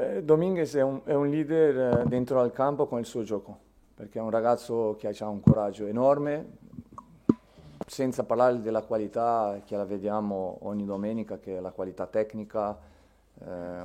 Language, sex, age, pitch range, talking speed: Italian, male, 40-59, 100-120 Hz, 165 wpm